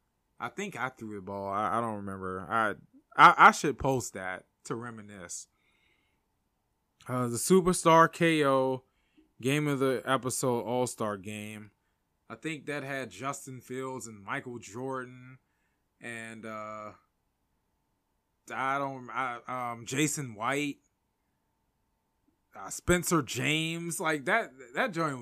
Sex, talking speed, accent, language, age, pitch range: male, 125 wpm, American, English, 20-39, 115-155 Hz